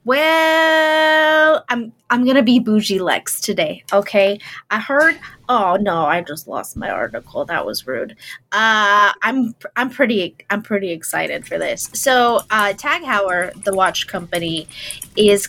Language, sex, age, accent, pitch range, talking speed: English, female, 20-39, American, 195-260 Hz, 145 wpm